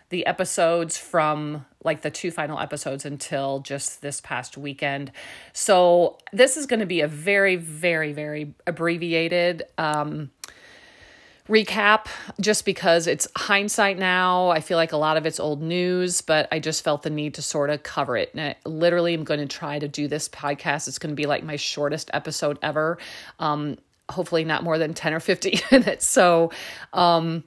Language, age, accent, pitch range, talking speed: English, 40-59, American, 150-180 Hz, 180 wpm